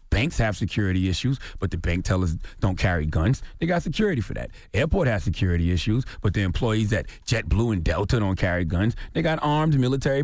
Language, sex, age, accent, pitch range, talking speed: English, male, 30-49, American, 95-135 Hz, 200 wpm